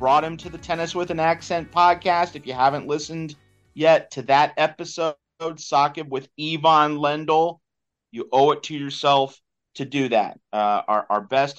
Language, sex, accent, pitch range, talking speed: English, male, American, 115-150 Hz, 170 wpm